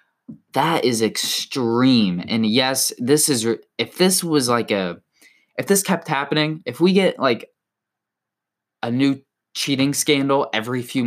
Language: English